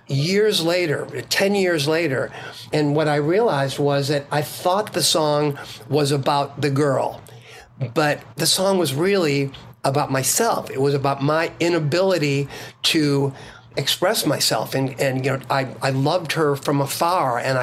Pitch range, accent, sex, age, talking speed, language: 140-175 Hz, American, male, 50-69, 155 wpm, English